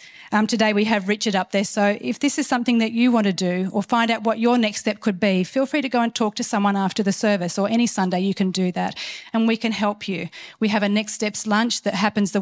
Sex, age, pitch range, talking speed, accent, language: female, 40-59, 195-230 Hz, 280 wpm, Australian, English